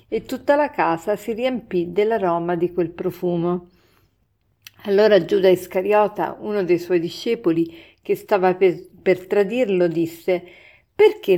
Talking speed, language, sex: 120 wpm, Italian, female